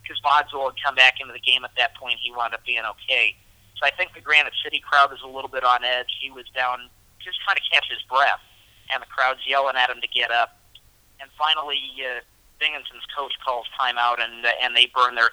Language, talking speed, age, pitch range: English, 230 wpm, 40-59, 120-140 Hz